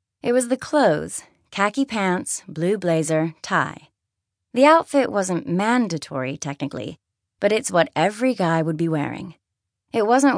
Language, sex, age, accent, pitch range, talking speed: English, female, 30-49, American, 155-225 Hz, 140 wpm